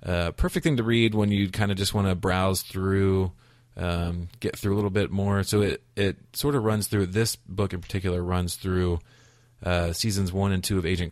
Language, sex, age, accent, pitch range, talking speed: English, male, 30-49, American, 90-120 Hz, 220 wpm